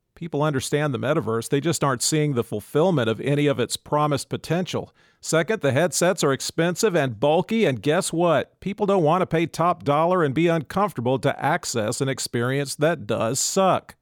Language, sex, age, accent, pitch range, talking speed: English, male, 40-59, American, 130-165 Hz, 185 wpm